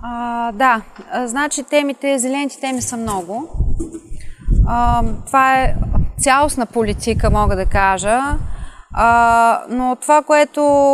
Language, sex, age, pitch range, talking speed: Bulgarian, female, 20-39, 215-265 Hz, 95 wpm